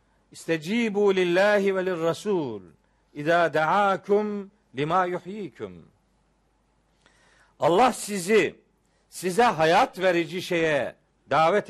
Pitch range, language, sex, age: 160-205 Hz, Turkish, male, 50-69